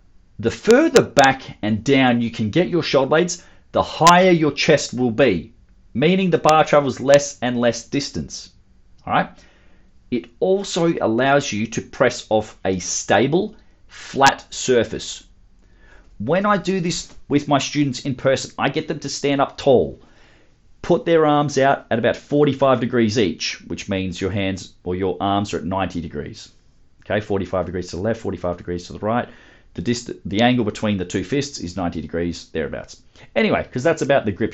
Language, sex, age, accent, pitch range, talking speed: English, male, 40-59, Australian, 105-145 Hz, 175 wpm